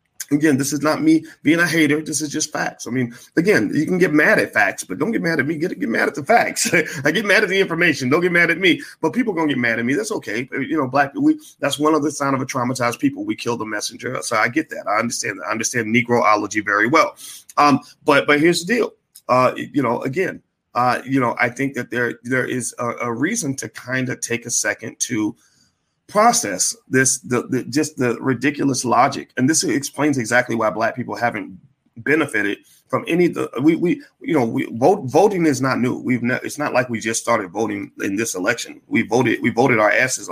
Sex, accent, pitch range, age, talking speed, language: male, American, 120-155 Hz, 40-59, 240 wpm, English